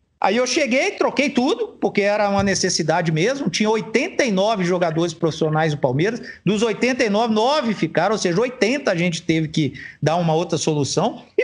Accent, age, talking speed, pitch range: Brazilian, 50-69, 170 wpm, 165-215 Hz